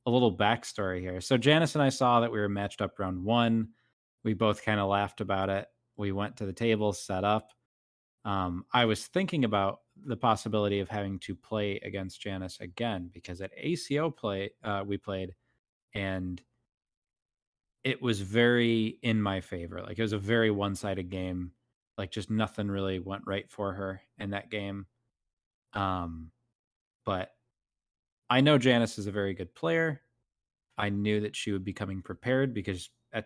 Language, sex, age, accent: English, male, 20-39, American